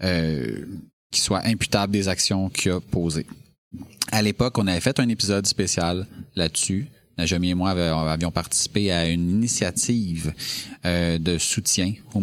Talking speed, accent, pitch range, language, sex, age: 140 wpm, Canadian, 85-105 Hz, French, male, 30-49